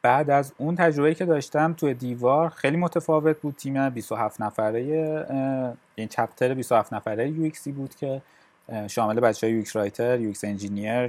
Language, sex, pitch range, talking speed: Persian, male, 105-140 Hz, 150 wpm